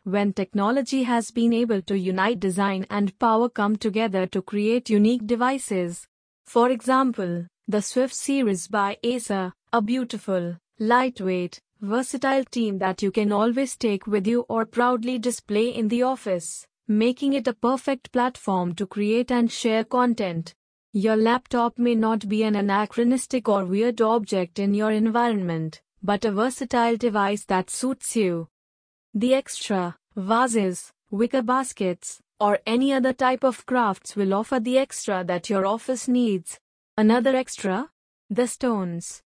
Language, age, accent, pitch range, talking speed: English, 20-39, Indian, 200-245 Hz, 145 wpm